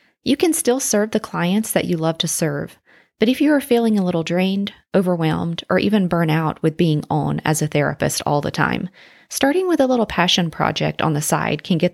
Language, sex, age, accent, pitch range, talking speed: English, female, 30-49, American, 160-220 Hz, 220 wpm